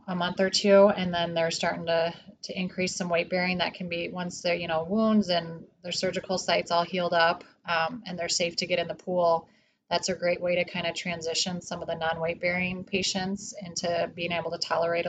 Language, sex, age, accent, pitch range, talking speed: English, female, 30-49, American, 170-185 Hz, 225 wpm